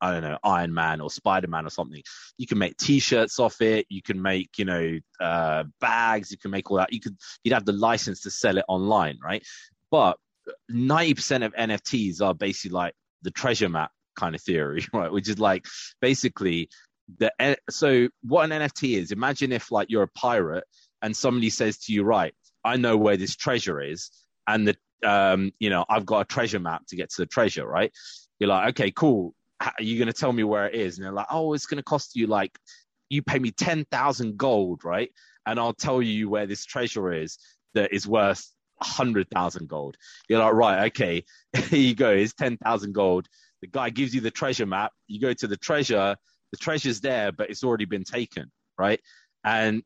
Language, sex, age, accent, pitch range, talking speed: English, male, 30-49, British, 100-125 Hz, 210 wpm